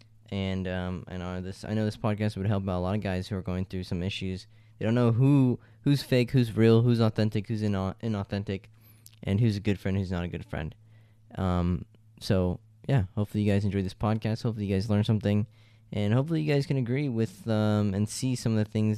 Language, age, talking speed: English, 10-29, 230 wpm